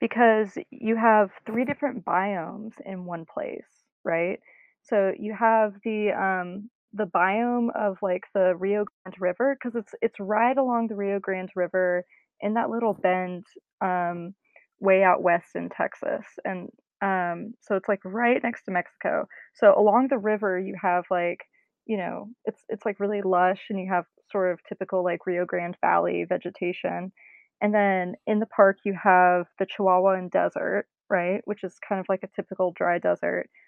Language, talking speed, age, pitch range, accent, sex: English, 170 wpm, 20-39, 185-230 Hz, American, female